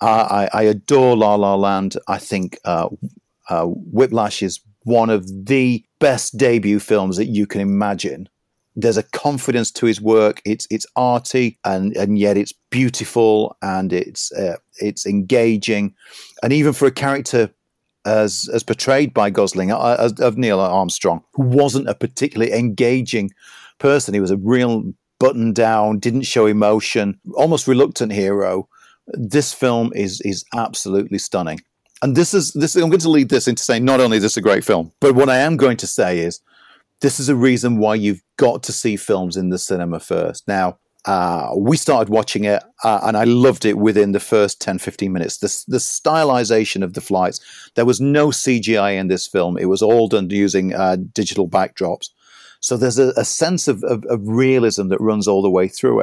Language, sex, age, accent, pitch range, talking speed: English, male, 40-59, British, 100-130 Hz, 185 wpm